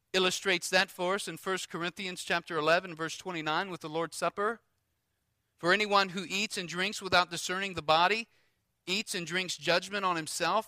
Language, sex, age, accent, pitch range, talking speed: English, male, 40-59, American, 150-195 Hz, 180 wpm